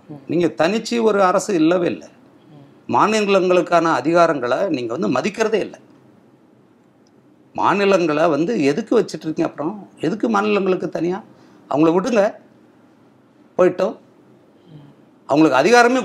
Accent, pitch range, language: native, 170-220 Hz, Tamil